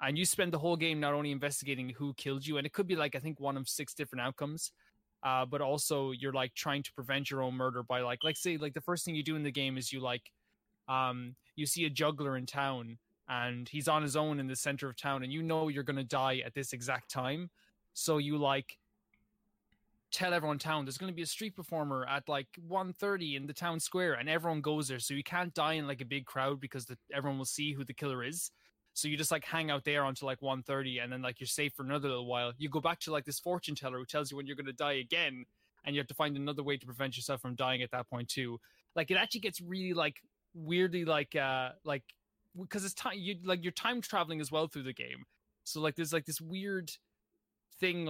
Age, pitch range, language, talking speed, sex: 20-39, 135-165 Hz, English, 255 wpm, male